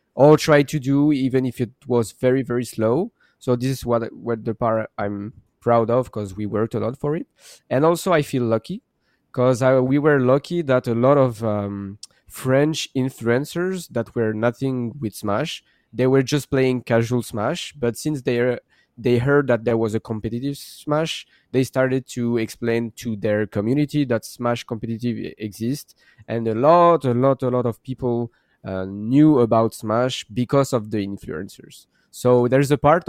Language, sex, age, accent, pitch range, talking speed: English, male, 20-39, French, 115-135 Hz, 180 wpm